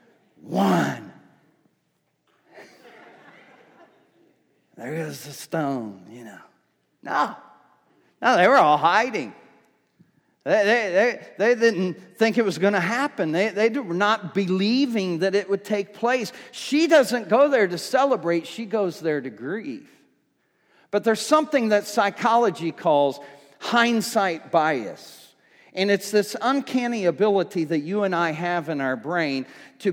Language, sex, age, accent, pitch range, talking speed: English, male, 40-59, American, 175-235 Hz, 130 wpm